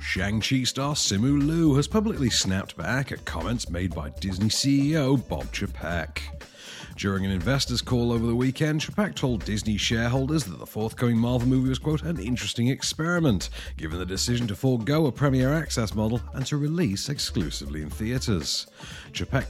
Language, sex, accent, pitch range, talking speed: English, male, British, 85-130 Hz, 165 wpm